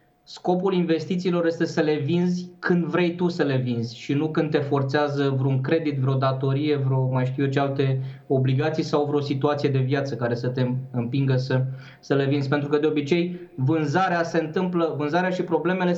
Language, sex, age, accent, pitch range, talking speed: Romanian, male, 20-39, native, 140-170 Hz, 190 wpm